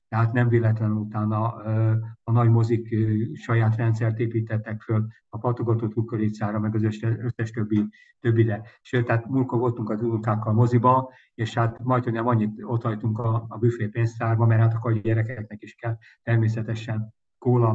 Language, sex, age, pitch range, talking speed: Hungarian, male, 50-69, 110-120 Hz, 150 wpm